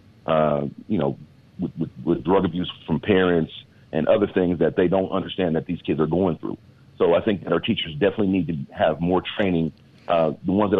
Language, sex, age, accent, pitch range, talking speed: English, male, 50-69, American, 85-110 Hz, 215 wpm